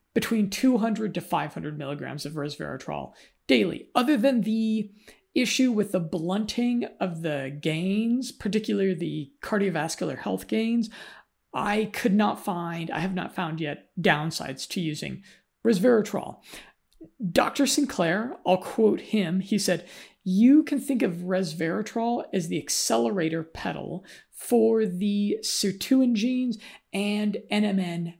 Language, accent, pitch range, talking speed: English, American, 175-225 Hz, 125 wpm